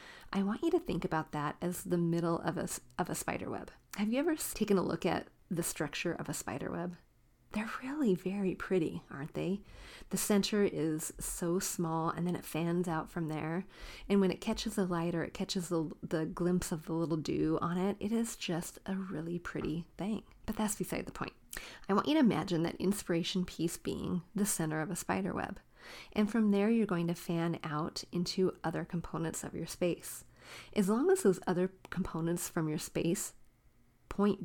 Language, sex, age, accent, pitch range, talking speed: English, female, 30-49, American, 170-200 Hz, 200 wpm